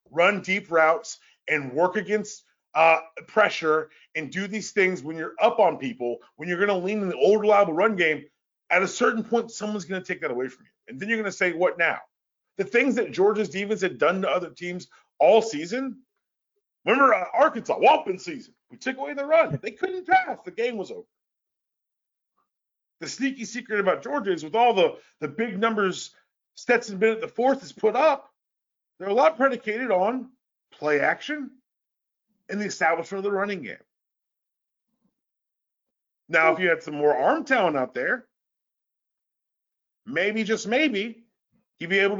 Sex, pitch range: male, 175-240 Hz